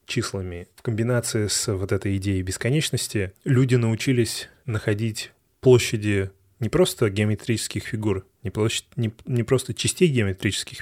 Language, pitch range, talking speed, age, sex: Russian, 100-120 Hz, 130 wpm, 20-39, male